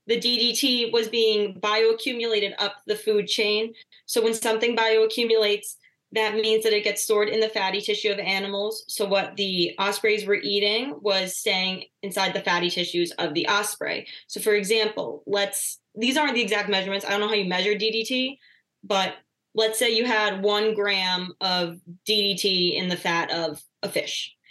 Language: English